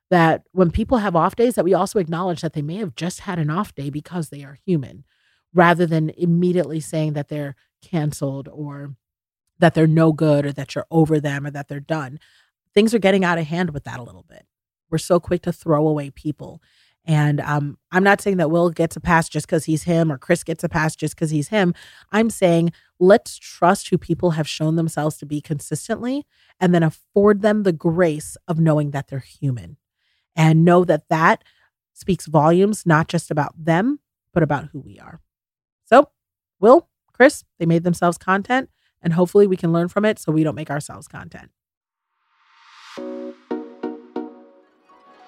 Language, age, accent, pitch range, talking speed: English, 30-49, American, 150-190 Hz, 190 wpm